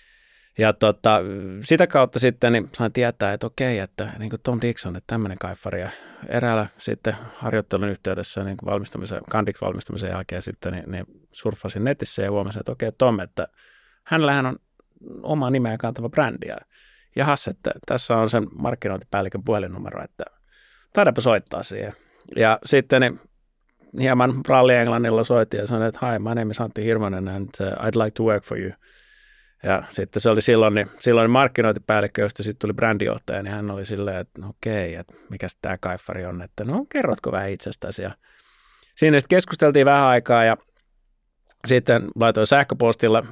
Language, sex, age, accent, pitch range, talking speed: English, male, 30-49, Finnish, 100-130 Hz, 150 wpm